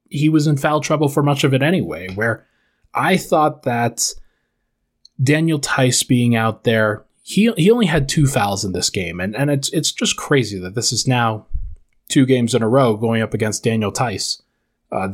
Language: English